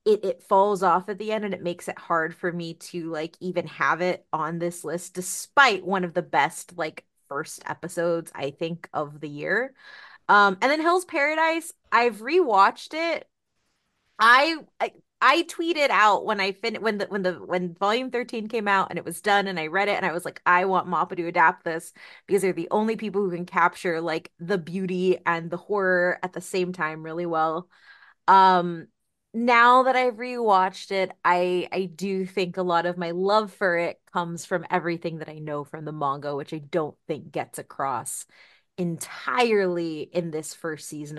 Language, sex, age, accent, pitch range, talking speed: English, female, 20-39, American, 165-200 Hz, 195 wpm